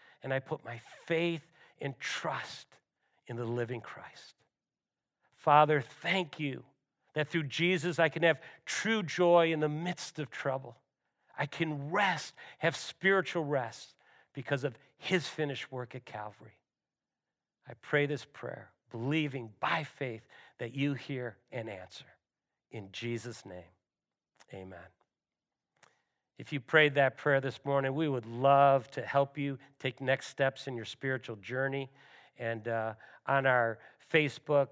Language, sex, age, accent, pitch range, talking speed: English, male, 50-69, American, 125-155 Hz, 140 wpm